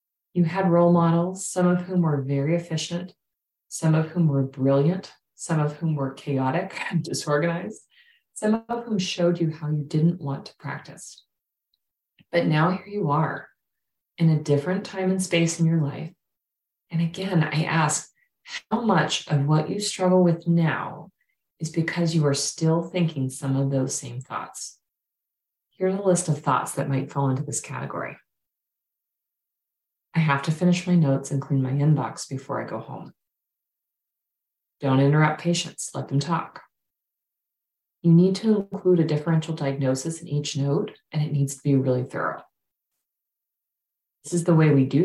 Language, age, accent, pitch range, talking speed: English, 30-49, American, 140-175 Hz, 165 wpm